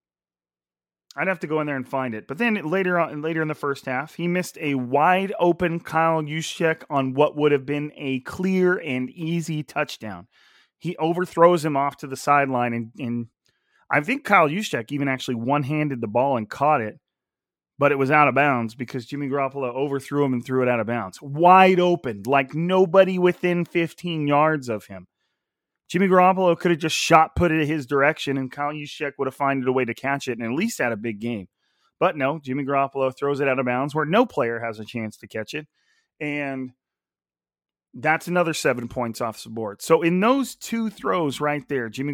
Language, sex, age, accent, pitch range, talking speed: English, male, 30-49, American, 125-160 Hz, 210 wpm